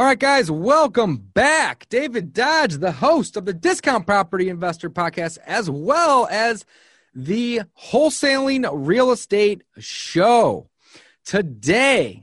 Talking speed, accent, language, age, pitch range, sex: 120 wpm, American, English, 30-49, 155-240 Hz, male